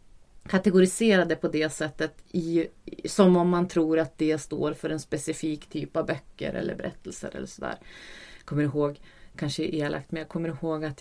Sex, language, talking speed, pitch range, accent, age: female, English, 175 wpm, 145-175 Hz, Swedish, 30-49